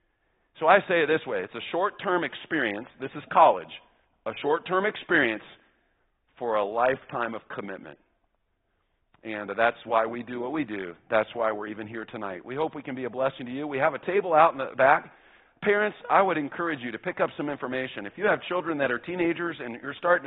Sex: male